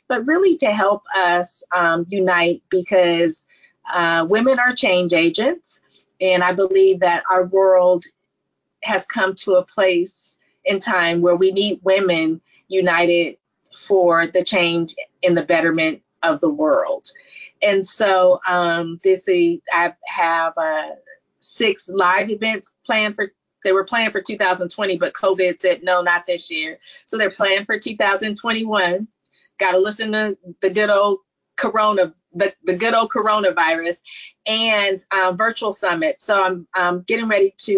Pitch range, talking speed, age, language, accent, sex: 175-215 Hz, 145 wpm, 30-49, English, American, female